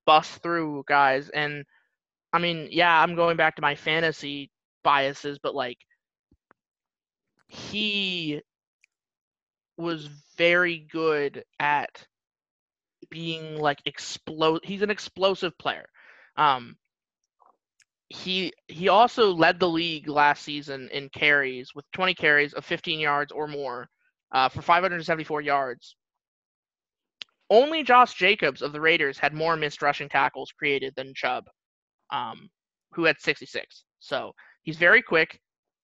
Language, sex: English, male